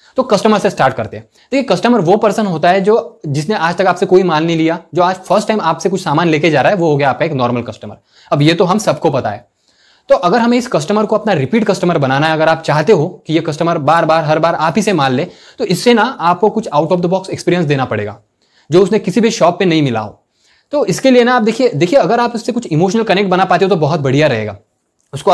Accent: native